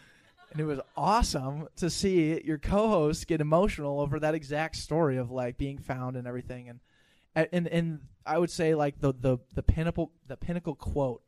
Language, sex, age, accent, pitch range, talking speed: English, male, 20-39, American, 130-165 Hz, 180 wpm